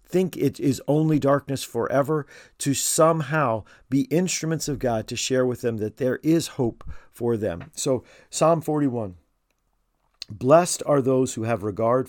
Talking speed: 155 wpm